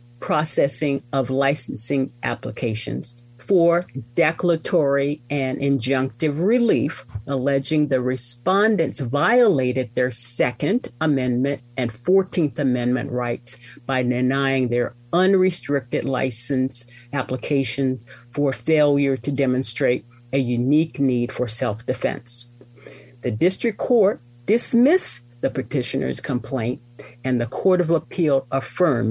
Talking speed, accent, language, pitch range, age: 100 wpm, American, English, 125-160 Hz, 50-69